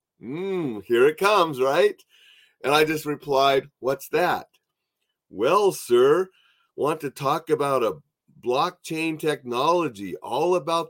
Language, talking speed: English, 120 wpm